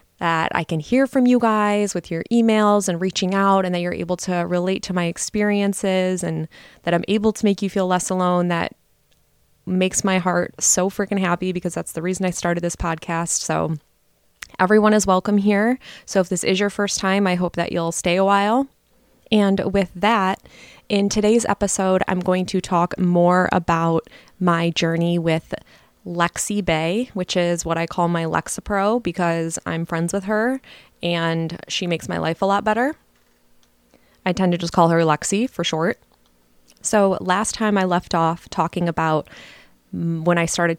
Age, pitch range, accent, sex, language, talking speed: 20-39, 165-195 Hz, American, female, English, 180 wpm